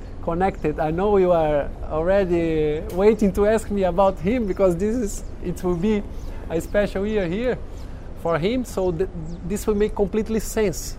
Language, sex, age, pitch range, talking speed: English, male, 20-39, 135-195 Hz, 165 wpm